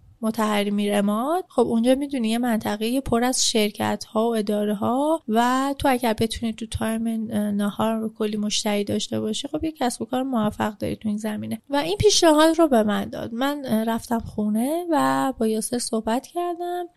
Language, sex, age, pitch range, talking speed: Persian, female, 30-49, 215-295 Hz, 180 wpm